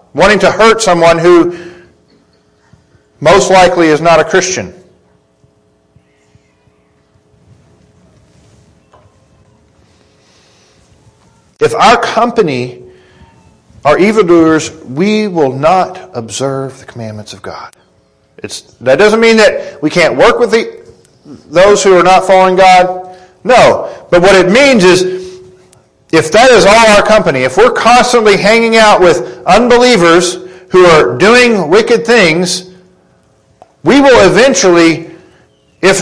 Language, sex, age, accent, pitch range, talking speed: English, male, 40-59, American, 135-210 Hz, 115 wpm